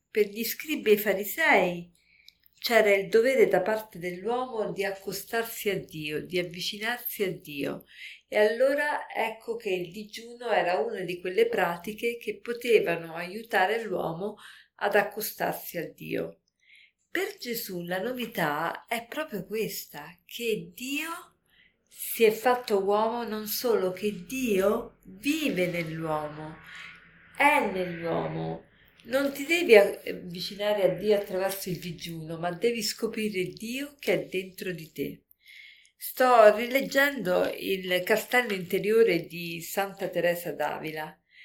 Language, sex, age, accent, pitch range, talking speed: Italian, female, 50-69, native, 180-235 Hz, 125 wpm